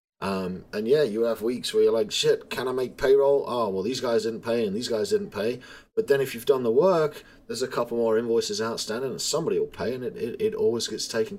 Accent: British